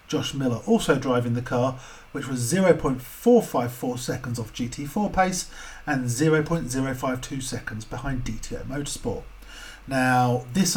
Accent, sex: British, male